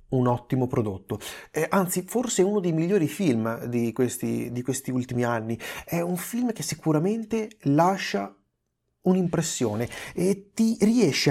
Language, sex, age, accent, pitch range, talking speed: Italian, male, 30-49, native, 120-185 Hz, 140 wpm